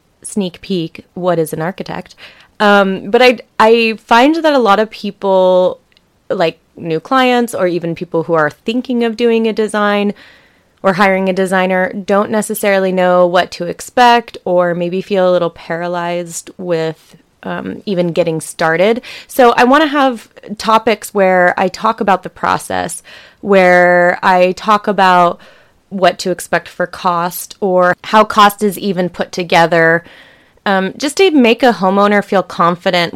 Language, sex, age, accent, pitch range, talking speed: English, female, 20-39, American, 175-215 Hz, 155 wpm